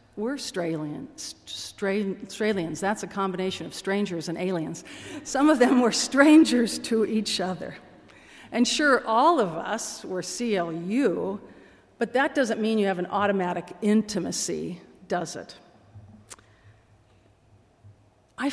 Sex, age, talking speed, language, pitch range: female, 50-69, 125 wpm, English, 170-230 Hz